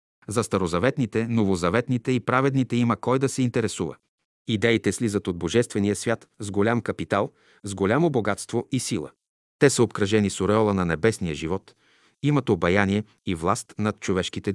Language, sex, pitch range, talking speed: Bulgarian, male, 100-125 Hz, 155 wpm